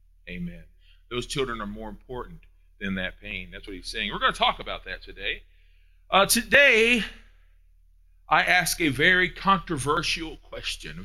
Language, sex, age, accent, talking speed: English, male, 40-59, American, 155 wpm